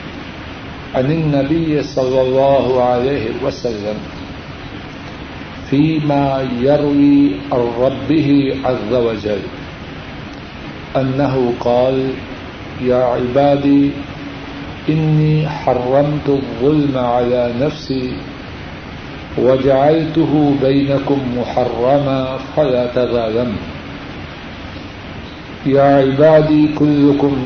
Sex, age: male, 60-79